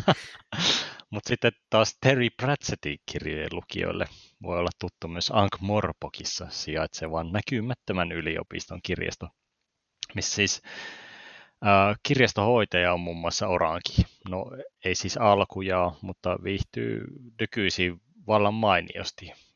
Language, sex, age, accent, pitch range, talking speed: Finnish, male, 30-49, native, 85-105 Hz, 100 wpm